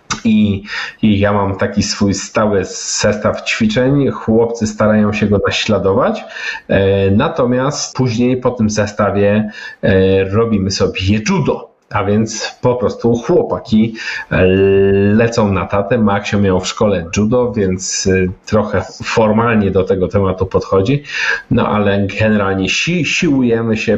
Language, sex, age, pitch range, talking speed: Polish, male, 40-59, 100-115 Hz, 125 wpm